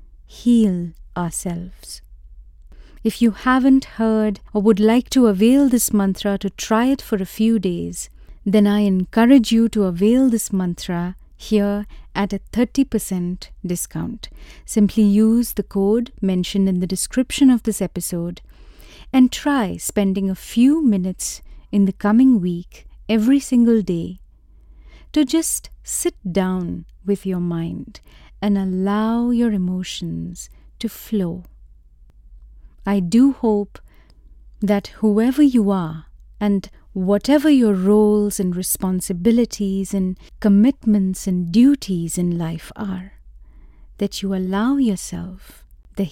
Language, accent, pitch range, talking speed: English, Indian, 175-220 Hz, 125 wpm